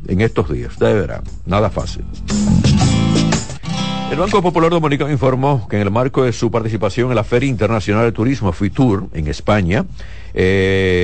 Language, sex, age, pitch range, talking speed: Spanish, male, 60-79, 95-120 Hz, 160 wpm